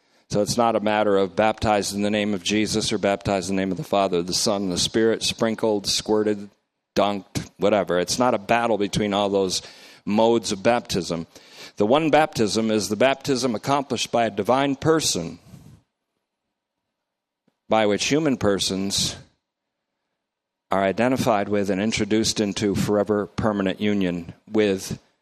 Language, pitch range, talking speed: English, 100-115 Hz, 150 wpm